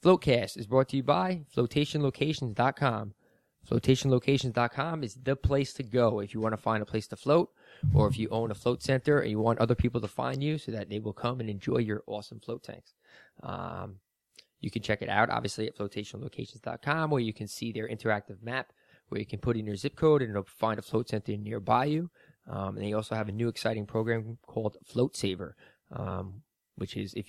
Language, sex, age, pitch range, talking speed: English, male, 20-39, 105-130 Hz, 210 wpm